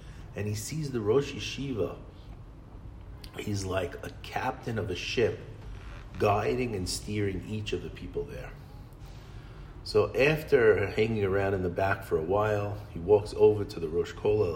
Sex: male